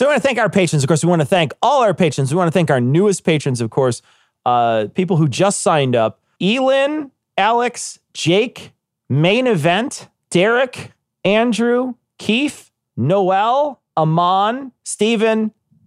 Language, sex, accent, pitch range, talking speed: English, male, American, 130-185 Hz, 160 wpm